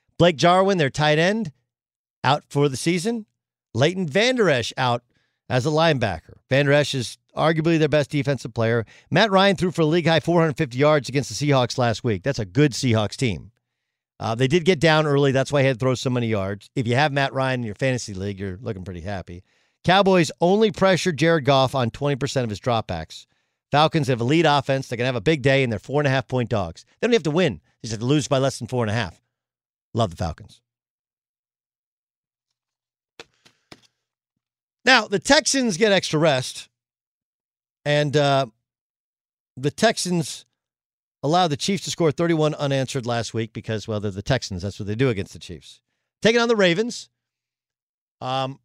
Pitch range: 120-160 Hz